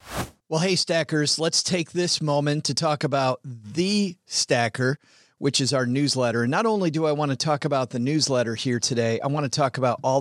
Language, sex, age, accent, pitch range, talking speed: English, male, 40-59, American, 120-145 Hz, 205 wpm